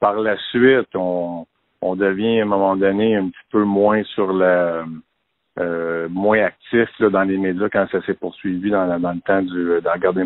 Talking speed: 185 wpm